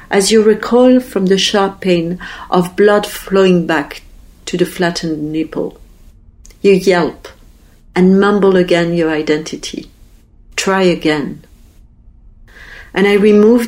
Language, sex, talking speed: German, female, 120 wpm